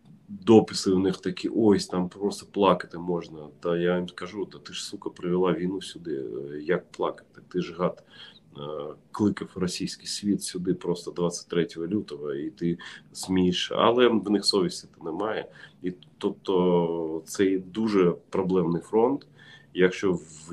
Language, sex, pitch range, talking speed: Ukrainian, male, 85-95 Hz, 140 wpm